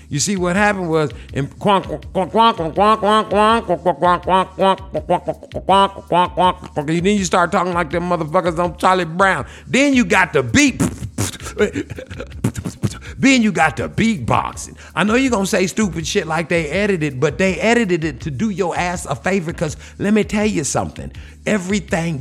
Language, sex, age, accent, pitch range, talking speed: English, male, 50-69, American, 130-205 Hz, 145 wpm